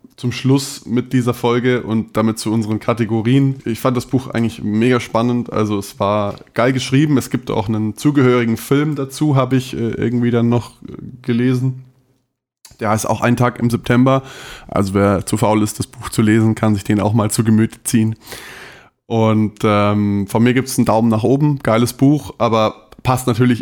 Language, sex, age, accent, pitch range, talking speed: German, male, 20-39, German, 105-125 Hz, 190 wpm